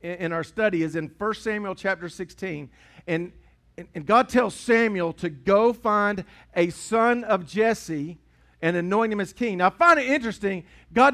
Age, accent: 50-69, American